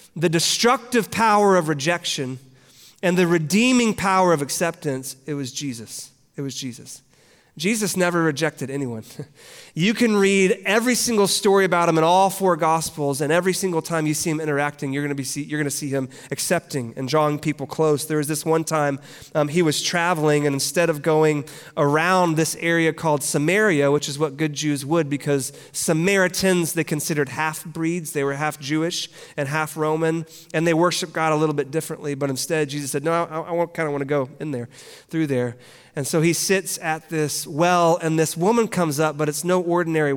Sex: male